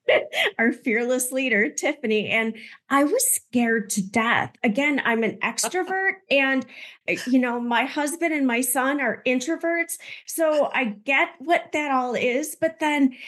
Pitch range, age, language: 210-260 Hz, 30-49, English